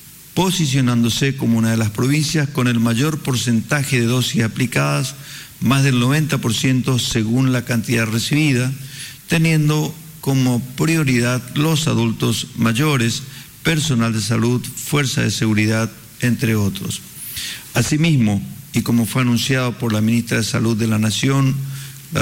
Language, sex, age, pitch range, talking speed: Spanish, male, 50-69, 115-140 Hz, 130 wpm